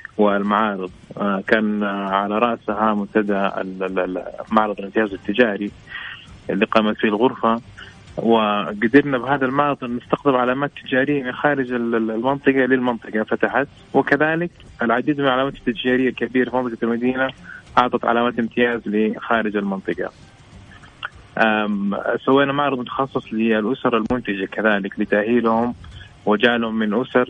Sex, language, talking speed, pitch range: male, English, 100 wpm, 105-125 Hz